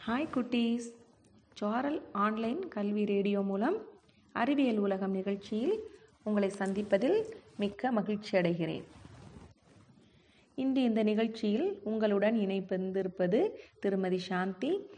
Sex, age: female, 30-49